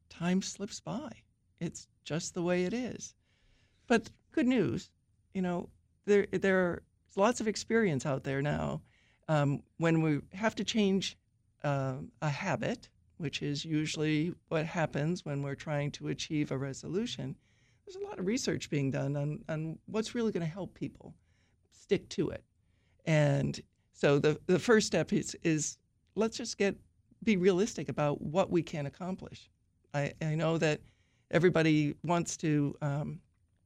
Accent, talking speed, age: American, 155 wpm, 60-79